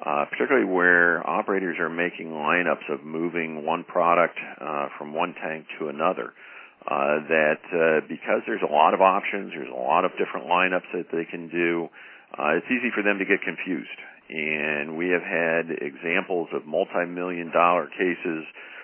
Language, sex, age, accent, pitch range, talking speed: English, male, 50-69, American, 80-90 Hz, 165 wpm